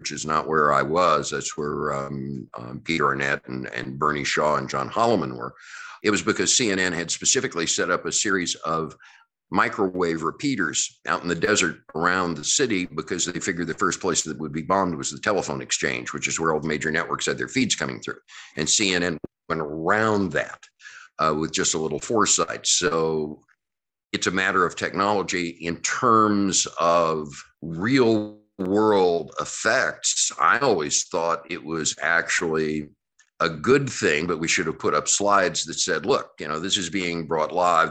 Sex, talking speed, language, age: male, 180 wpm, English, 50-69